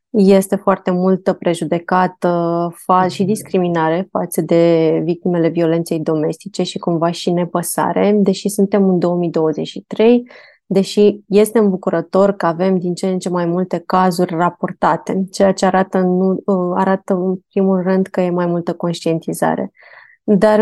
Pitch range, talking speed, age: 175-200 Hz, 135 wpm, 20-39